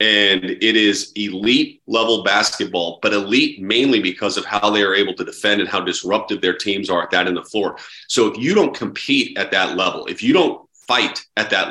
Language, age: English, 40-59